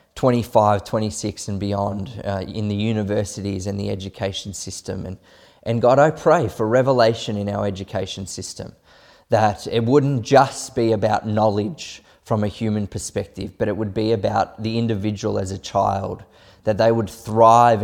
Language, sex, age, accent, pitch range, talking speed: English, male, 20-39, Australian, 105-120 Hz, 160 wpm